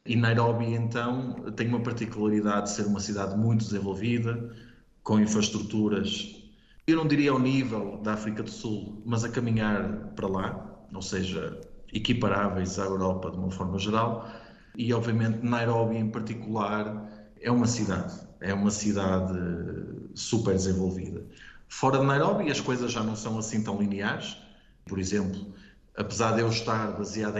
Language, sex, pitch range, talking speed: Portuguese, male, 100-115 Hz, 150 wpm